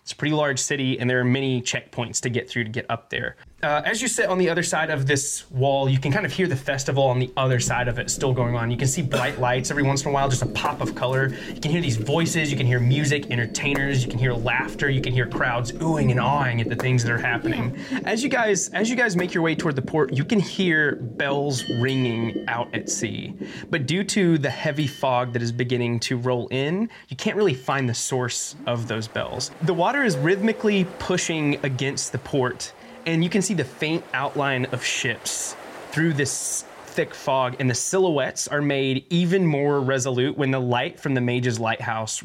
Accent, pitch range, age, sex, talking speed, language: American, 125-165 Hz, 20-39, male, 230 wpm, English